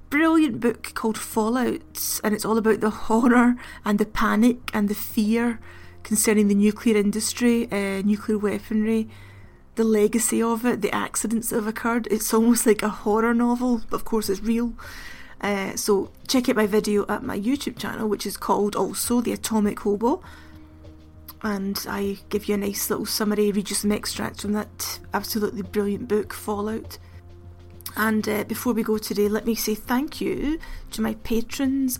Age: 30-49